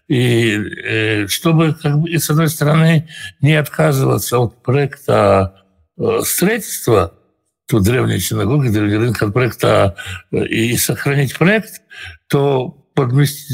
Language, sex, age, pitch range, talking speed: Russian, male, 60-79, 105-145 Hz, 120 wpm